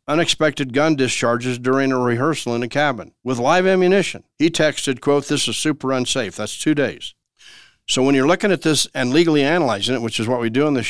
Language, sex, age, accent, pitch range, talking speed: English, male, 60-79, American, 125-160 Hz, 215 wpm